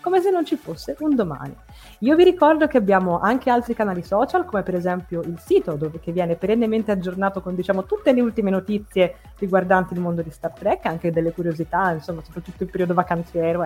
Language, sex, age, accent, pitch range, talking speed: Italian, female, 20-39, native, 175-240 Hz, 200 wpm